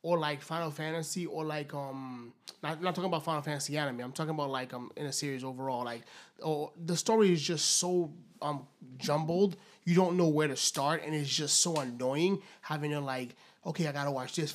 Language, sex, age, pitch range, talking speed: English, male, 30-49, 150-210 Hz, 215 wpm